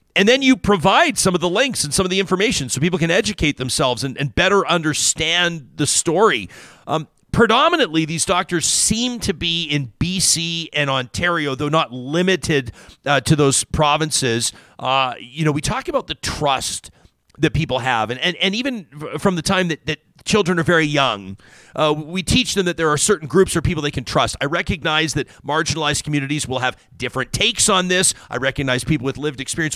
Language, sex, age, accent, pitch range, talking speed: English, male, 40-59, American, 140-180 Hz, 195 wpm